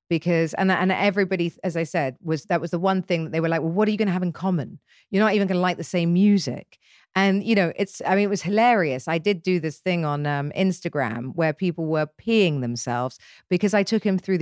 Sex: female